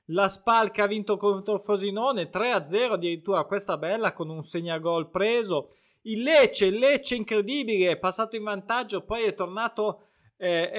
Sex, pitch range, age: male, 170-215 Hz, 20-39